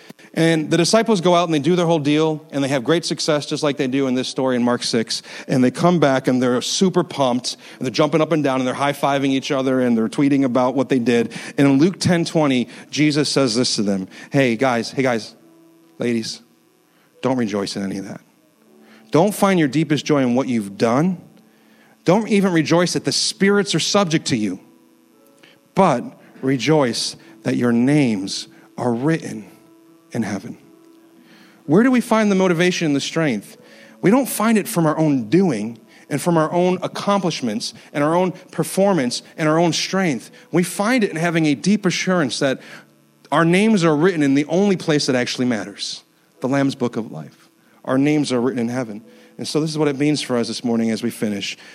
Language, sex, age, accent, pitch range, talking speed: English, male, 40-59, American, 125-170 Hz, 205 wpm